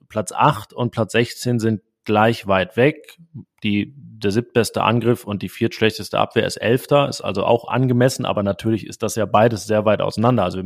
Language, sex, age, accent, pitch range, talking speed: German, male, 30-49, German, 100-120 Hz, 195 wpm